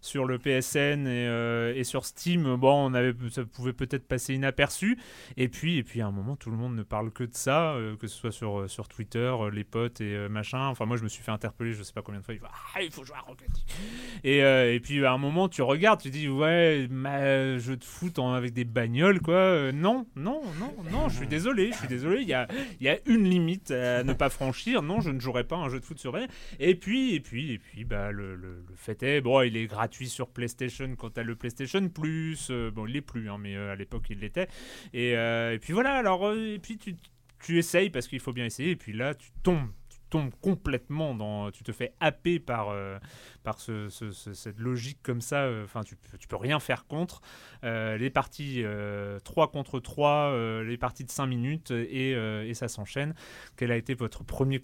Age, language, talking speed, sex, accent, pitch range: 30-49, French, 250 wpm, male, French, 115-145 Hz